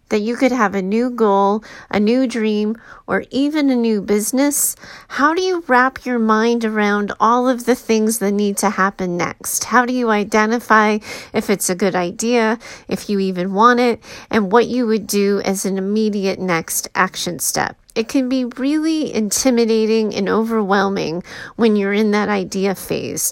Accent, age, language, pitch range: American, 30-49, English, 200-250 Hz